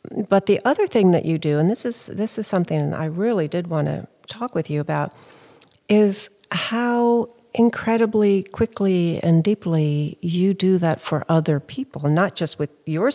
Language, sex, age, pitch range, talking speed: English, female, 60-79, 155-190 Hz, 175 wpm